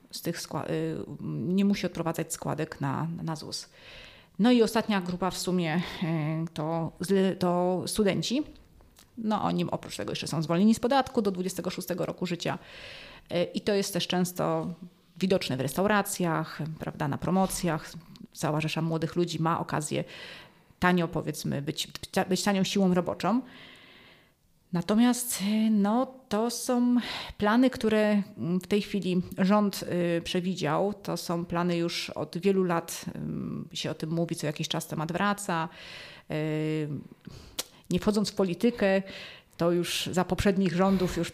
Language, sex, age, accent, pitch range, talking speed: Polish, female, 30-49, native, 170-205 Hz, 140 wpm